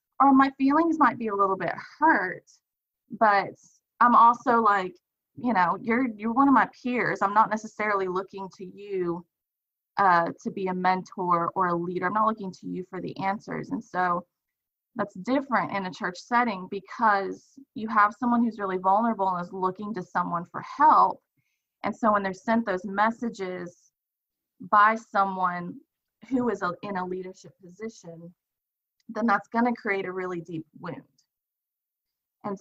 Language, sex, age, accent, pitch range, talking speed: English, female, 20-39, American, 190-240 Hz, 165 wpm